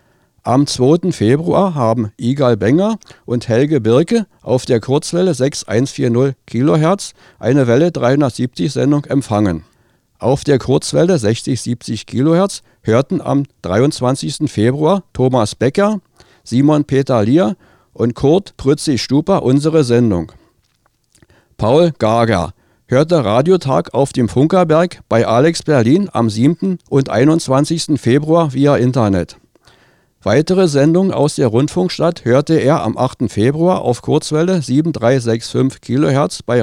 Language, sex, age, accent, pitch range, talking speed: German, male, 50-69, German, 120-150 Hz, 115 wpm